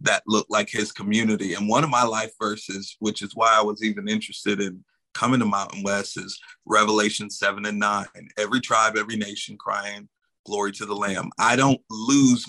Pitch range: 105-120 Hz